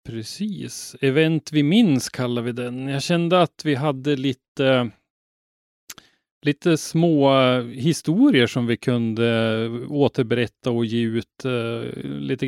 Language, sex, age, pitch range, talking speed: Swedish, male, 30-49, 115-135 Hz, 115 wpm